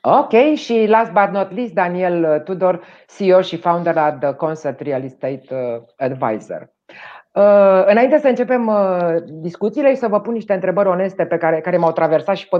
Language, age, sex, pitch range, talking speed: Romanian, 30-49, female, 160-205 Hz, 155 wpm